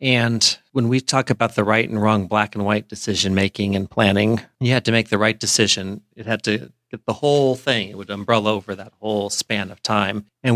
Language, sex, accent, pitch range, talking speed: English, male, American, 105-130 Hz, 220 wpm